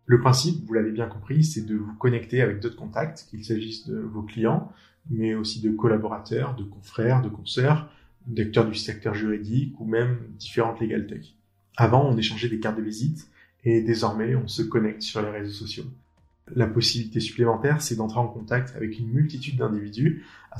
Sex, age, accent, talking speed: male, 20-39, French, 185 wpm